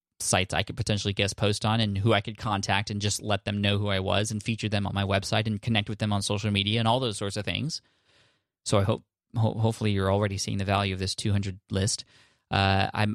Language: English